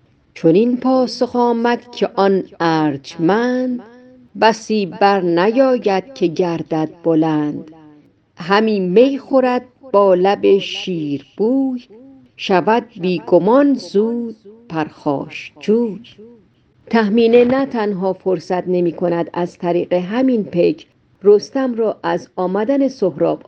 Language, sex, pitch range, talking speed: Persian, female, 175-235 Hz, 100 wpm